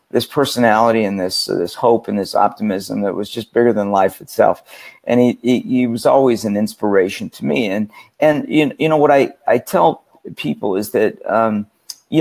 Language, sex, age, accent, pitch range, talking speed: English, male, 50-69, American, 110-145 Hz, 195 wpm